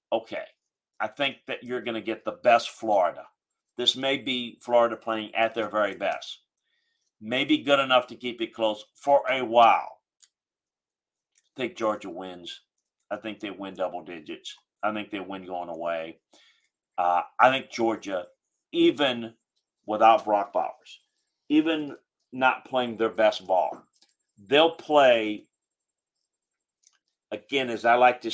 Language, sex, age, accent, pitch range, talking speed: English, male, 40-59, American, 100-125 Hz, 140 wpm